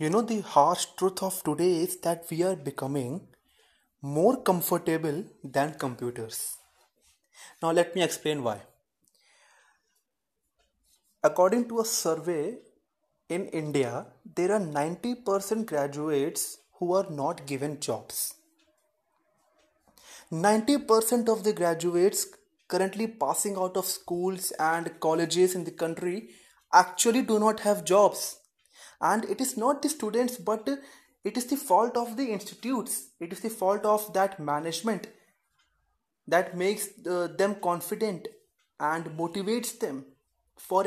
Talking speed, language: 130 wpm, Hindi